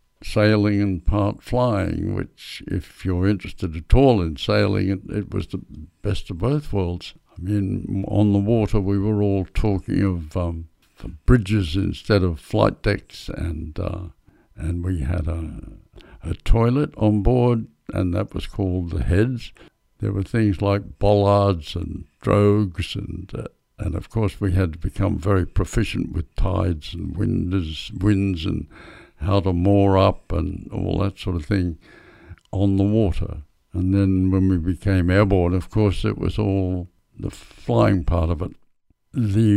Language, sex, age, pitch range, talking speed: English, male, 60-79, 90-105 Hz, 160 wpm